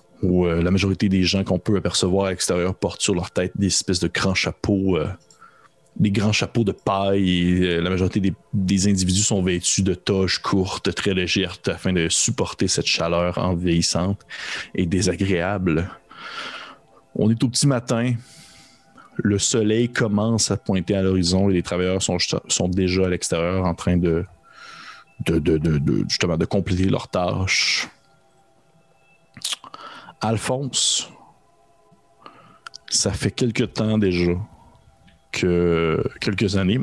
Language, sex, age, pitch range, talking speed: French, male, 30-49, 90-100 Hz, 145 wpm